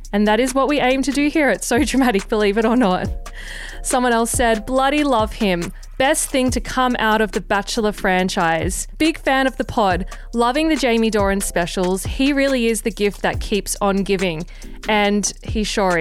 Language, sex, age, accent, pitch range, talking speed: English, female, 20-39, Australian, 200-260 Hz, 200 wpm